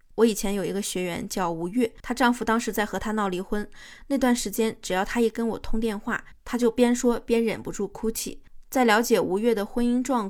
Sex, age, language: female, 20-39, Chinese